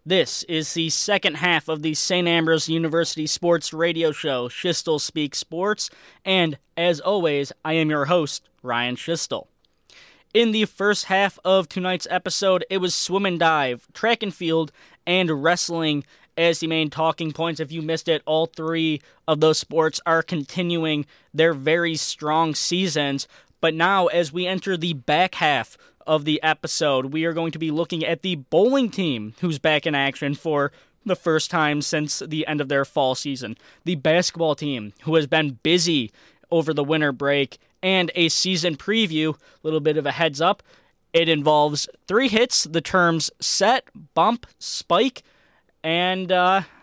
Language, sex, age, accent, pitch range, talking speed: English, male, 20-39, American, 155-180 Hz, 165 wpm